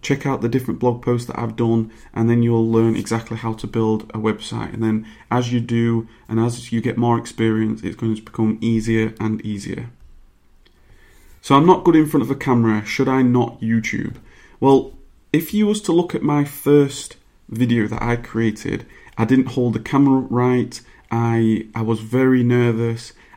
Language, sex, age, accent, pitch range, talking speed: English, male, 30-49, British, 115-125 Hz, 190 wpm